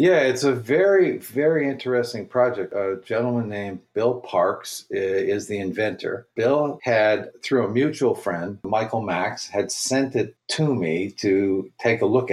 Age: 50-69